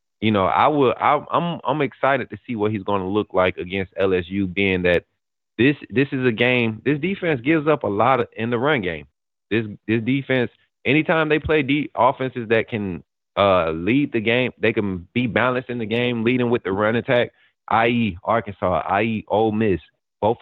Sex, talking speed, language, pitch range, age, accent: male, 200 wpm, English, 95-115 Hz, 30-49, American